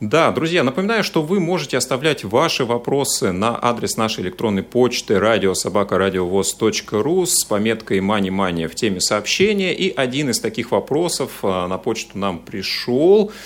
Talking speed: 135 wpm